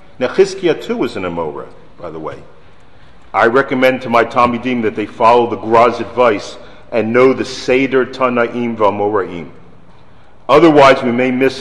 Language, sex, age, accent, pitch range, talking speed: English, male, 50-69, American, 110-135 Hz, 150 wpm